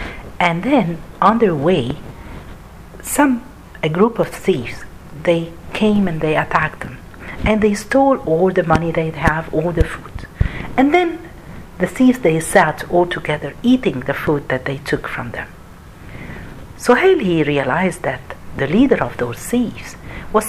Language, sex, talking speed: Arabic, female, 155 wpm